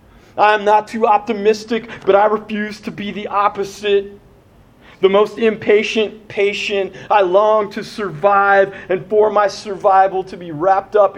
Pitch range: 165-210 Hz